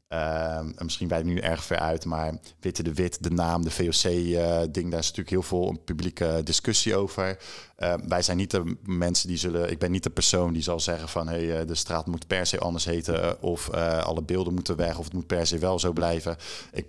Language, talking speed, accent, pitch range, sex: Dutch, 240 wpm, Dutch, 85-95 Hz, male